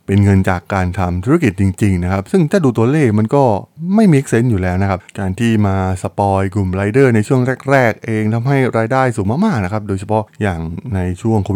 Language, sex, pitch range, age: Thai, male, 95-120 Hz, 20-39